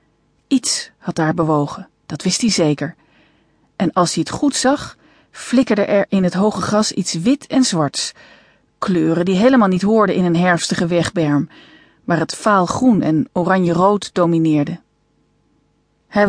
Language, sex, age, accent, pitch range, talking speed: Dutch, female, 40-59, Dutch, 165-220 Hz, 155 wpm